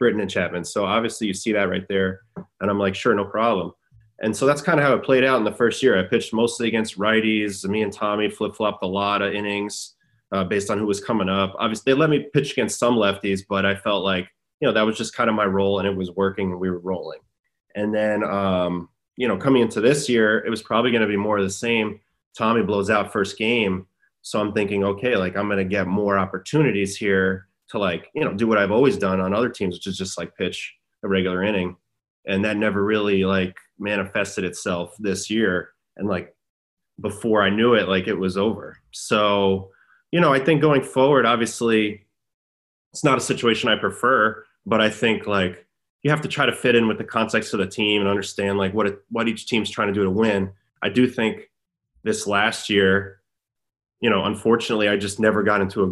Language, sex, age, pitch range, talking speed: English, male, 20-39, 95-115 Hz, 225 wpm